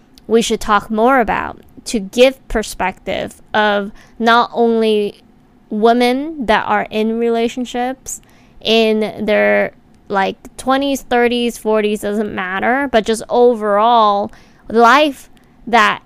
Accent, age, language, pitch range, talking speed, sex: American, 20-39, English, 210-240 Hz, 110 wpm, female